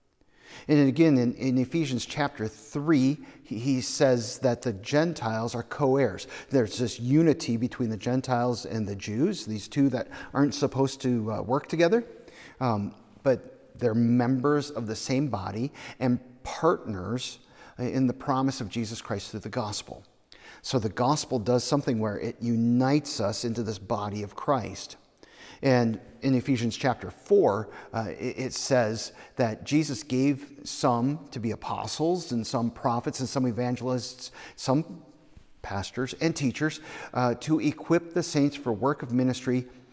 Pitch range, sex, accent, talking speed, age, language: 115-140 Hz, male, American, 150 wpm, 50-69, English